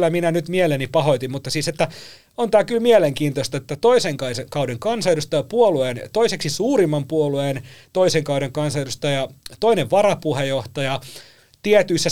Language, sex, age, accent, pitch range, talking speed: Finnish, male, 30-49, native, 125-170 Hz, 130 wpm